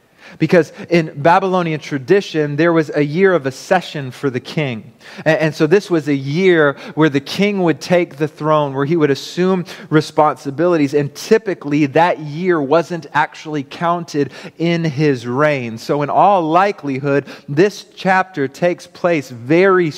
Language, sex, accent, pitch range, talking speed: English, male, American, 140-170 Hz, 150 wpm